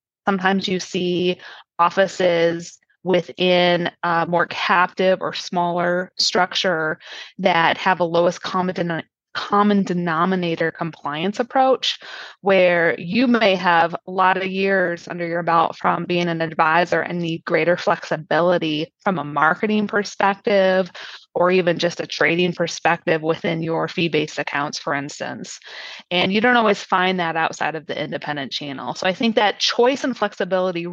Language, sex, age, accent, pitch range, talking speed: English, female, 20-39, American, 170-210 Hz, 145 wpm